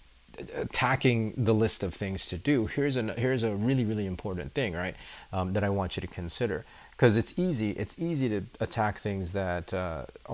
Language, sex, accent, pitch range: English, male, American, 90-110 Hz